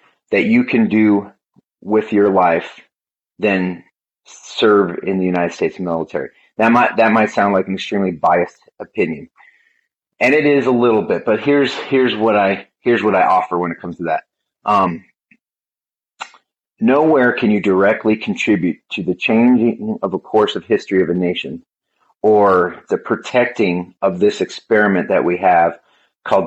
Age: 30-49